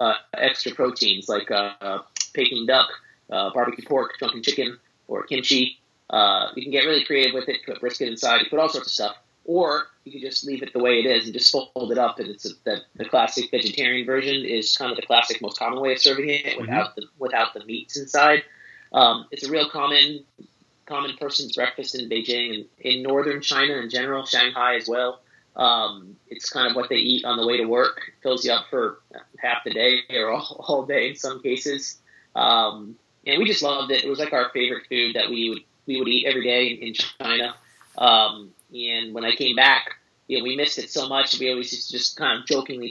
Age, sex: 30-49, male